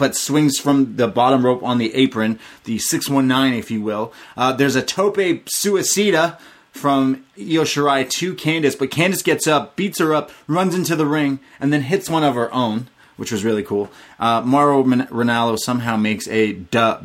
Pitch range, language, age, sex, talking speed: 110-145 Hz, English, 30-49, male, 185 wpm